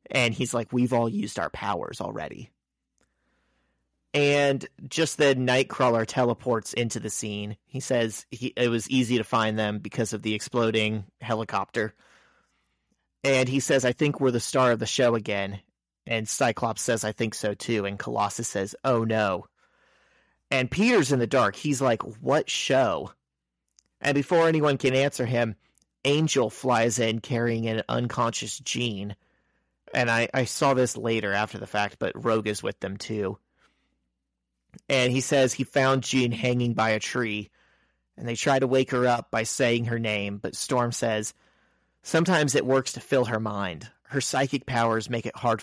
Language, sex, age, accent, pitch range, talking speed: English, male, 30-49, American, 105-130 Hz, 170 wpm